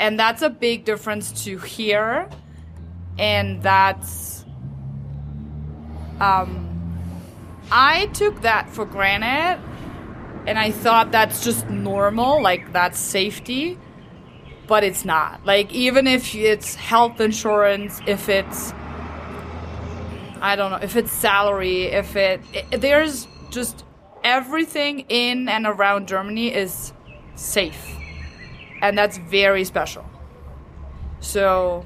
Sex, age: female, 20-39